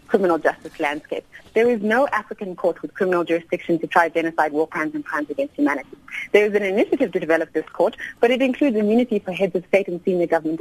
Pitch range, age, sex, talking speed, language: 170-235 Hz, 30-49, female, 220 wpm, English